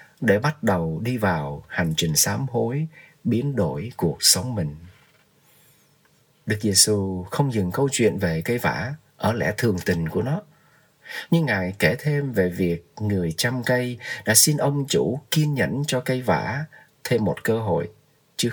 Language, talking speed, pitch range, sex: Vietnamese, 170 wpm, 105-150 Hz, male